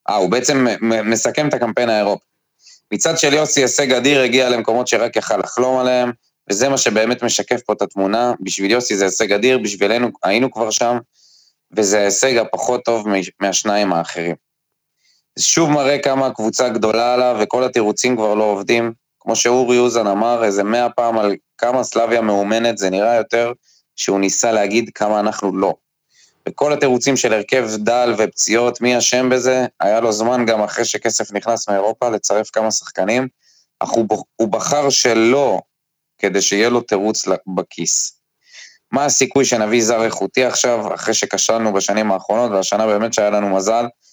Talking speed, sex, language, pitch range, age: 160 wpm, male, Hebrew, 105-125 Hz, 20-39